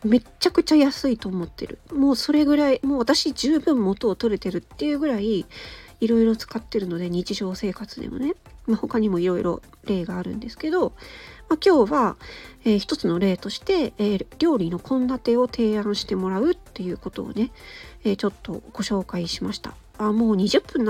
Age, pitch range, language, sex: 40-59, 205-295 Hz, Japanese, female